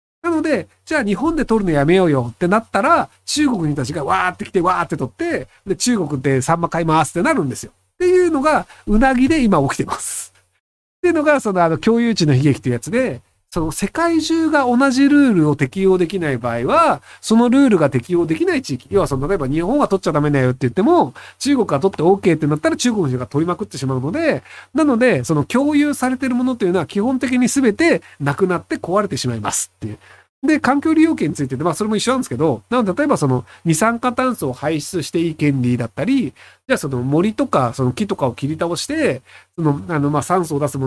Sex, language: male, Japanese